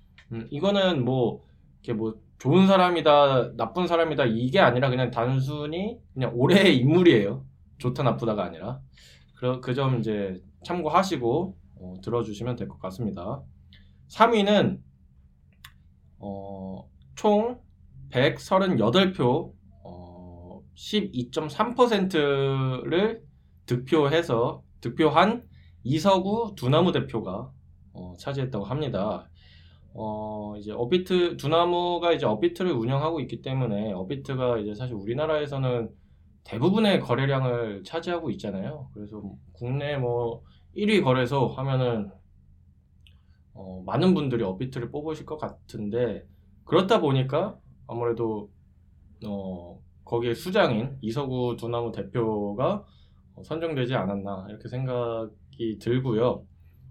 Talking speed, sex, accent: 90 wpm, male, Korean